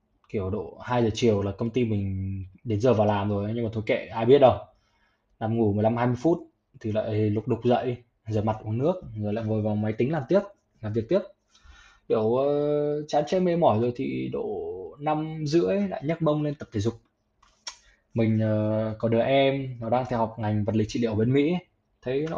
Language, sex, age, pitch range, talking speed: Vietnamese, male, 20-39, 110-135 Hz, 225 wpm